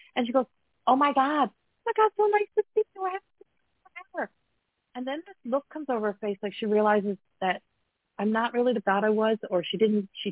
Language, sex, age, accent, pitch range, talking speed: English, female, 40-59, American, 195-250 Hz, 235 wpm